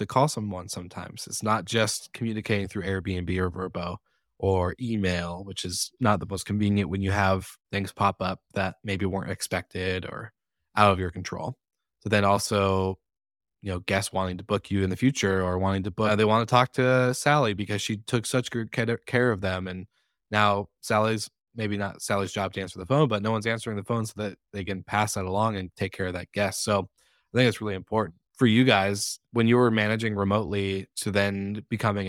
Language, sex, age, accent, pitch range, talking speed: English, male, 20-39, American, 95-115 Hz, 210 wpm